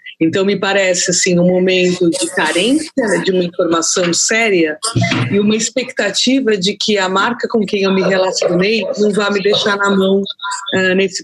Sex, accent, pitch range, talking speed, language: female, Brazilian, 180-230 Hz, 170 wpm, Portuguese